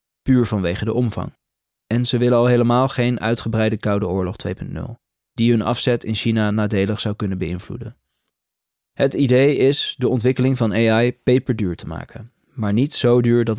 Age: 20-39